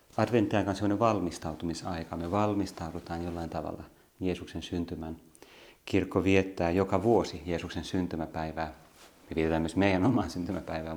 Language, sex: Finnish, male